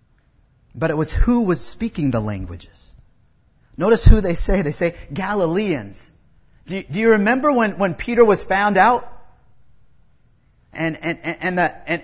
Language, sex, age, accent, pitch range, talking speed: English, male, 40-59, American, 165-225 Hz, 155 wpm